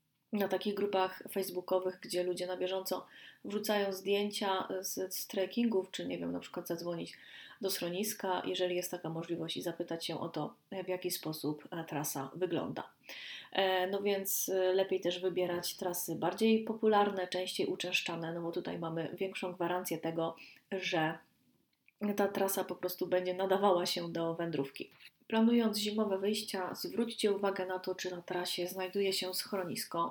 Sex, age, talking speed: female, 30-49, 150 wpm